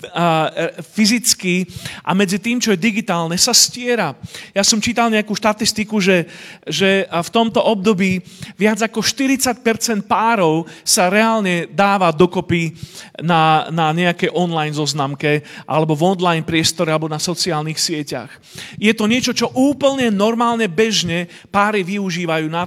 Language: Slovak